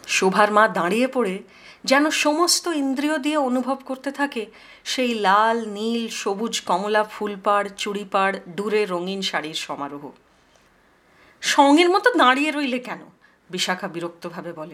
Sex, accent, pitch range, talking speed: female, native, 185-270 Hz, 110 wpm